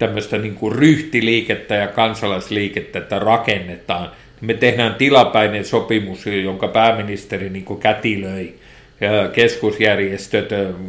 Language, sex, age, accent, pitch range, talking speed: Finnish, male, 50-69, native, 100-130 Hz, 90 wpm